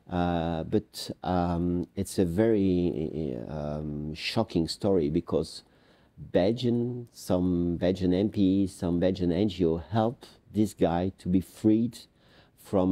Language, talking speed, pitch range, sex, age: English, 115 wpm, 80-95 Hz, male, 50-69